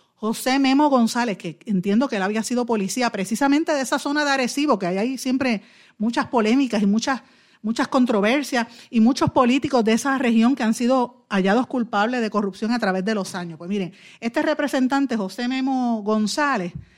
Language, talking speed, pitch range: Spanish, 180 wpm, 200-265 Hz